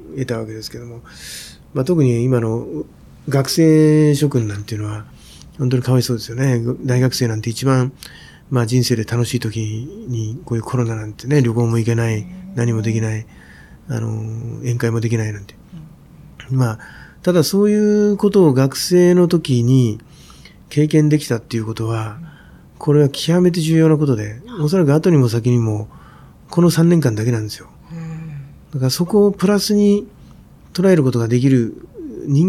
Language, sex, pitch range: Japanese, male, 115-155 Hz